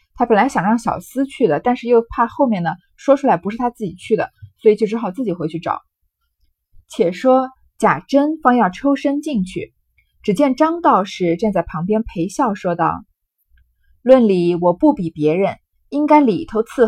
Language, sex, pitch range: Chinese, female, 185-270 Hz